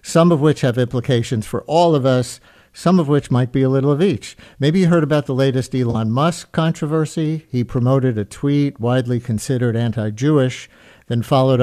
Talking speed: 185 wpm